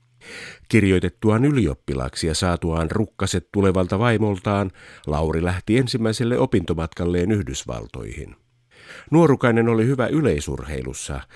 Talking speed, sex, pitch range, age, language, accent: 85 wpm, male, 85-115 Hz, 50-69, Finnish, native